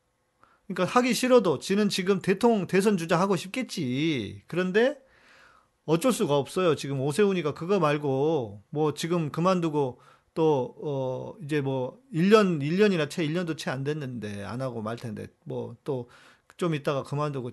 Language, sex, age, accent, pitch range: Korean, male, 40-59, native, 130-185 Hz